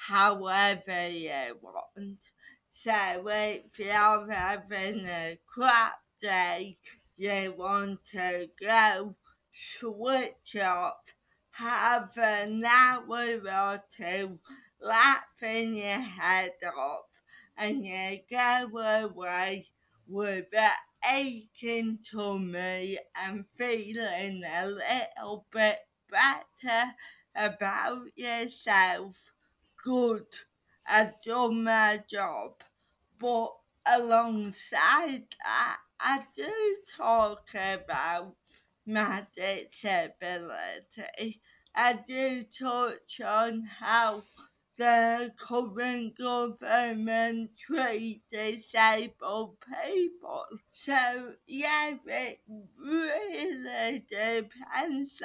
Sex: female